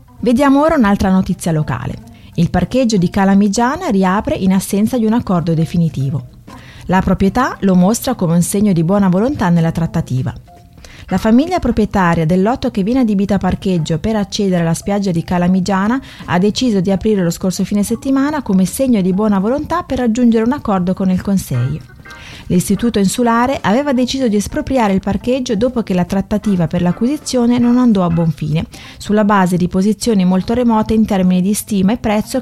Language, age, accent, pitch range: Italian, 30-49, native, 175-230 Hz